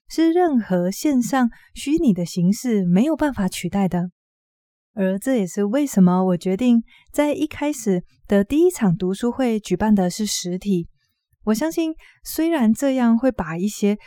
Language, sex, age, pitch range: Chinese, female, 20-39, 185-245 Hz